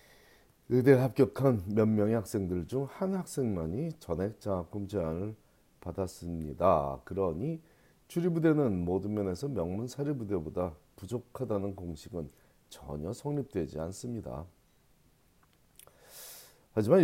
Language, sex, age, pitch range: Korean, male, 40-59, 90-130 Hz